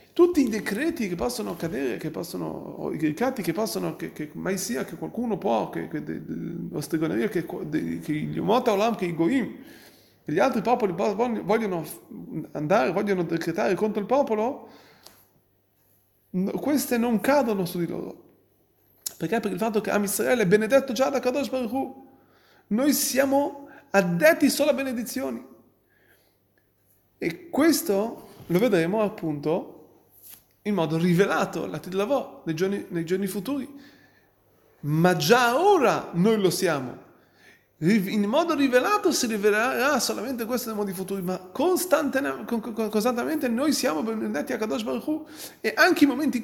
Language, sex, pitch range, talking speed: Italian, male, 180-255 Hz, 145 wpm